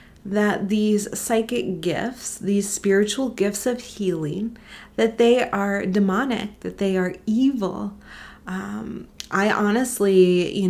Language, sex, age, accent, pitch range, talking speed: English, female, 30-49, American, 185-225 Hz, 120 wpm